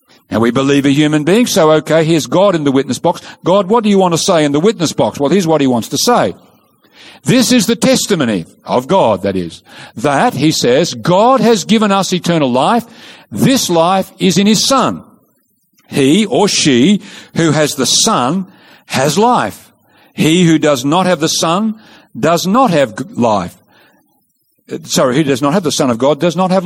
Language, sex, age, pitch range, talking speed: English, male, 50-69, 150-205 Hz, 195 wpm